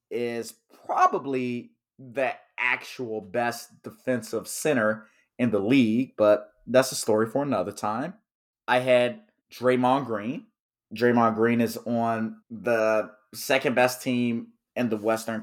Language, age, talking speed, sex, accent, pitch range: English, 30-49, 125 wpm, male, American, 115-145 Hz